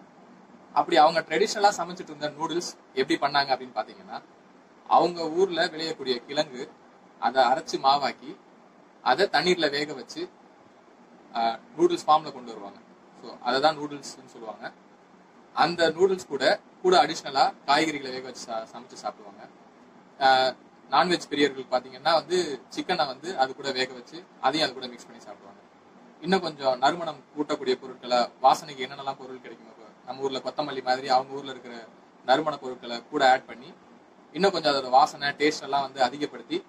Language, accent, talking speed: Tamil, native, 140 wpm